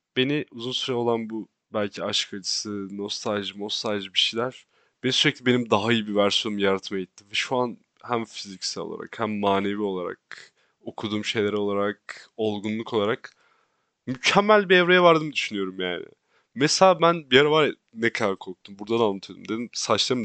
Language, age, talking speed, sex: Turkish, 30-49, 160 wpm, male